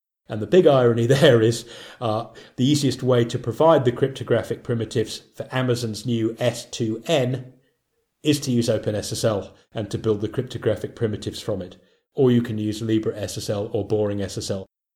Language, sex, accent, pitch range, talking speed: English, male, British, 115-145 Hz, 160 wpm